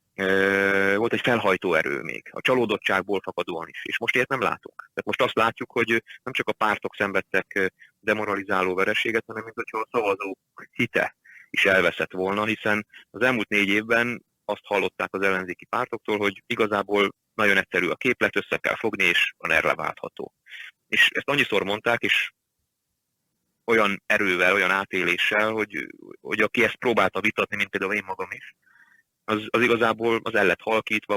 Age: 30-49